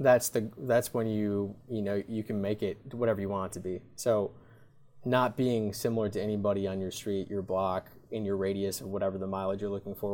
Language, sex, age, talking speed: English, male, 20-39, 225 wpm